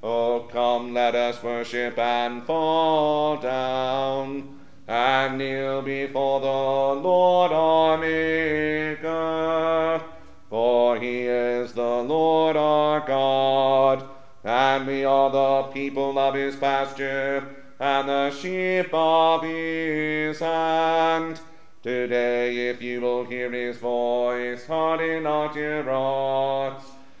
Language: English